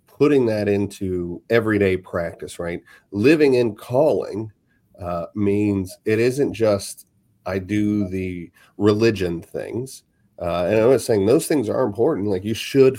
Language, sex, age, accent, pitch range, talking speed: English, male, 40-59, American, 95-110 Hz, 145 wpm